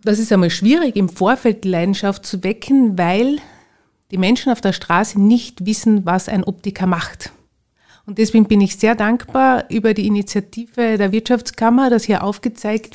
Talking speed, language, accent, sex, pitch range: 160 wpm, German, Austrian, female, 190-225 Hz